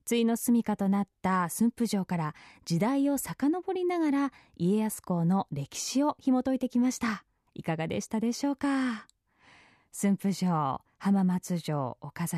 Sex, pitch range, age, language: female, 190-290 Hz, 20-39, Japanese